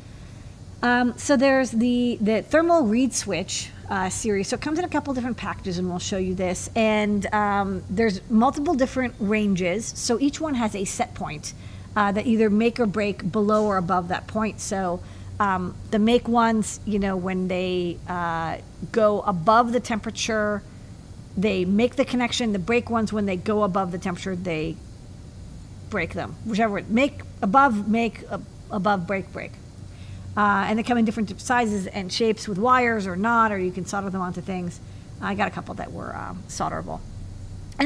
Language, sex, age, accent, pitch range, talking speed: English, female, 50-69, American, 185-240 Hz, 180 wpm